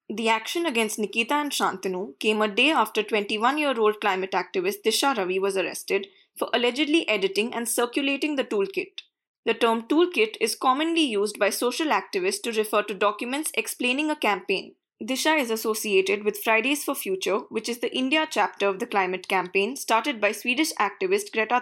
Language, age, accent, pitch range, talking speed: English, 20-39, Indian, 205-290 Hz, 170 wpm